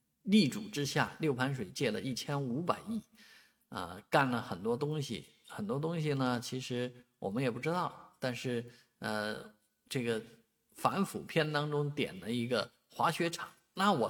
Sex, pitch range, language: male, 120-160 Hz, Chinese